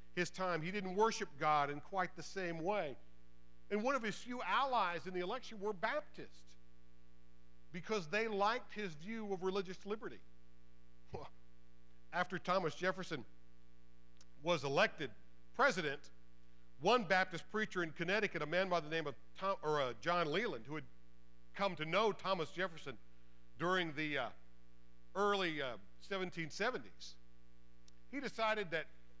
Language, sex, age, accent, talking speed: English, male, 50-69, American, 140 wpm